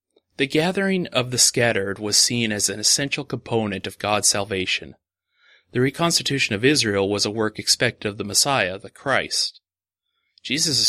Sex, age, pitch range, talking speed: male, 30-49, 100-130 Hz, 155 wpm